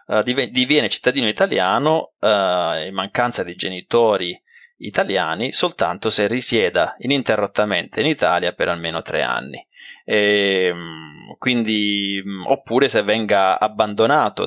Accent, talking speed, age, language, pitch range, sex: native, 100 wpm, 20-39, Italian, 100-145 Hz, male